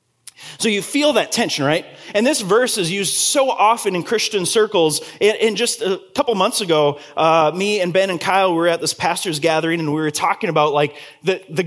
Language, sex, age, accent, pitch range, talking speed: English, male, 20-39, American, 175-255 Hz, 210 wpm